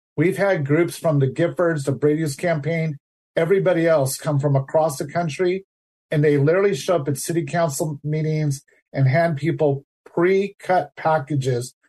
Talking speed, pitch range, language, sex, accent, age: 150 wpm, 140-165 Hz, English, male, American, 40-59